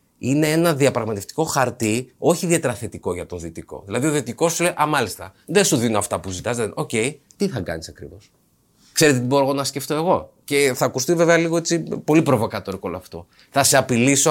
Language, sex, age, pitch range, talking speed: Greek, male, 30-49, 115-170 Hz, 200 wpm